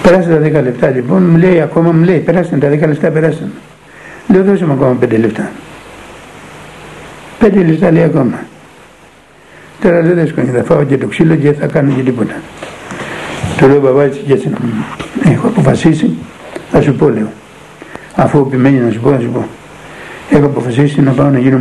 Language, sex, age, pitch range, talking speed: Greek, male, 60-79, 130-165 Hz, 165 wpm